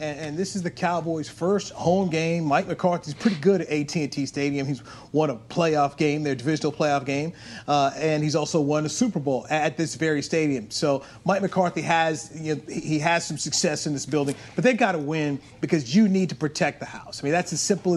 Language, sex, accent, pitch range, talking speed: English, male, American, 150-195 Hz, 215 wpm